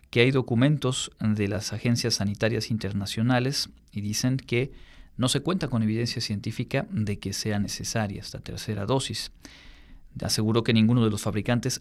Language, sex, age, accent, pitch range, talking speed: Spanish, male, 40-59, Mexican, 105-120 Hz, 150 wpm